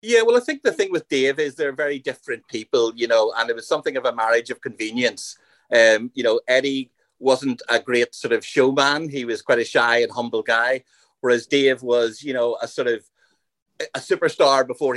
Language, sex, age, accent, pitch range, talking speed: English, male, 30-49, Irish, 120-165 Hz, 215 wpm